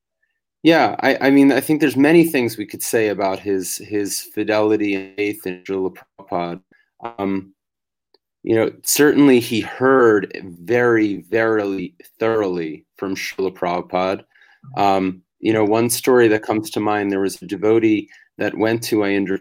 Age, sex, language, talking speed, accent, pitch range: 30-49, male, English, 155 wpm, American, 95-120 Hz